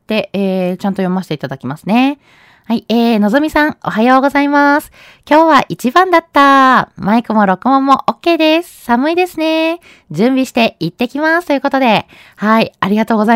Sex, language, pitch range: female, Japanese, 185-270 Hz